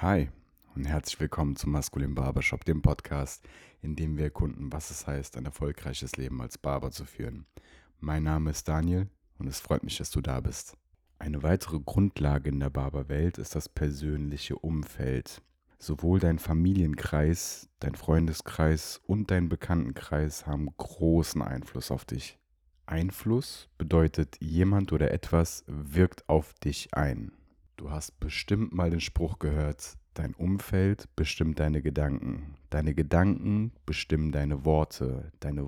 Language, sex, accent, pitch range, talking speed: German, male, German, 70-85 Hz, 145 wpm